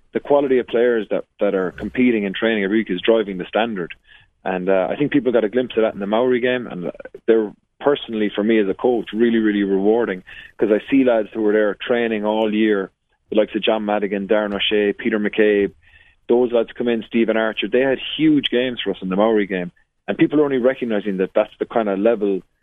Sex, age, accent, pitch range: male, 30-49, Irish, 100-120 Hz